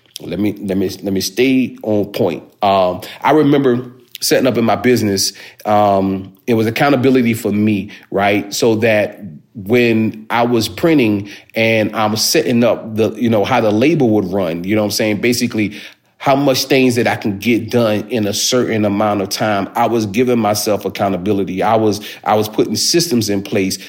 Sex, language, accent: male, English, American